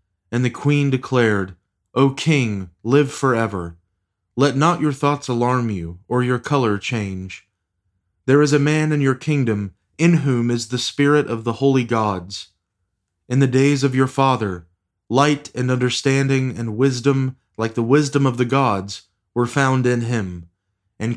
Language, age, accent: English, 30-49, American